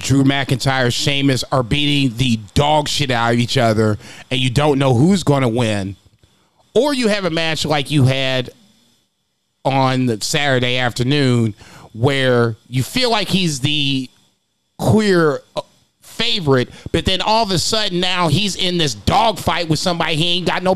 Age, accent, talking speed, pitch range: 30-49, American, 170 wpm, 135-205 Hz